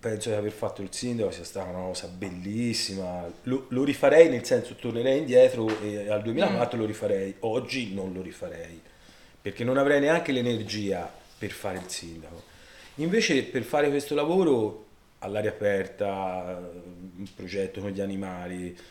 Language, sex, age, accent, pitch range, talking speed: Italian, male, 30-49, native, 95-115 Hz, 150 wpm